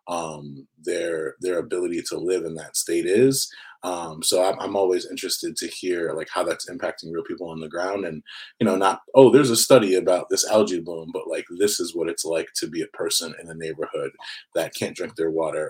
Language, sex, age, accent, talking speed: English, male, 30-49, American, 220 wpm